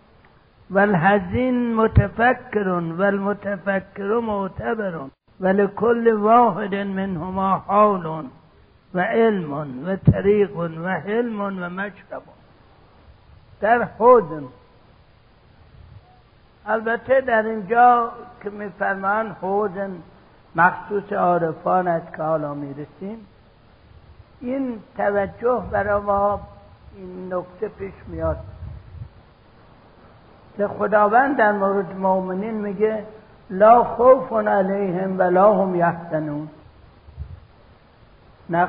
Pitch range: 150-215 Hz